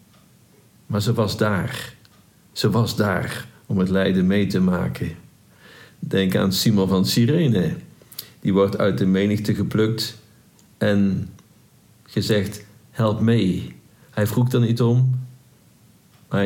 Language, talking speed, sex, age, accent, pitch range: Dutch, 125 wpm, male, 50-69, Dutch, 100-125 Hz